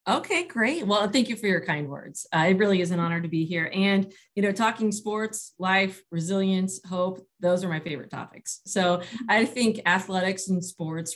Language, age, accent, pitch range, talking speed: English, 30-49, American, 160-195 Hz, 200 wpm